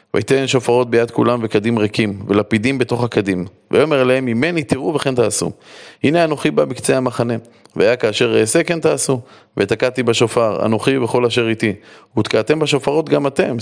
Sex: male